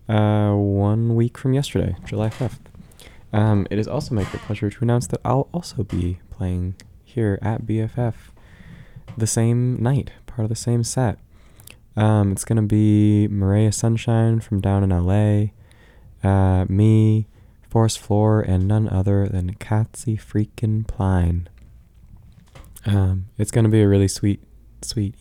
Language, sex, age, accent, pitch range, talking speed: English, male, 20-39, American, 95-110 Hz, 140 wpm